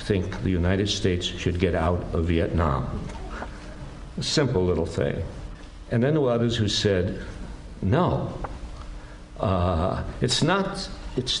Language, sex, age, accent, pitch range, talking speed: English, male, 60-79, American, 105-165 Hz, 120 wpm